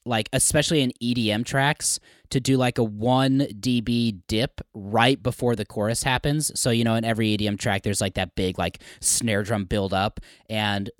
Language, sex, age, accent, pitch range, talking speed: English, male, 20-39, American, 105-135 Hz, 185 wpm